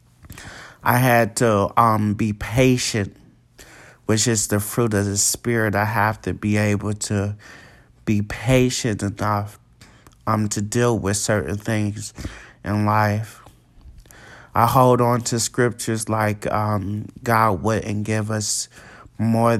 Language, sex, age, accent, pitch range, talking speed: English, male, 30-49, American, 105-115 Hz, 130 wpm